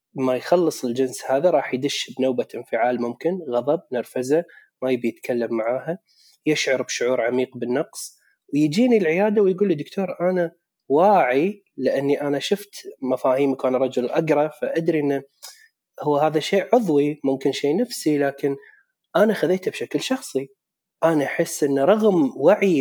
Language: Arabic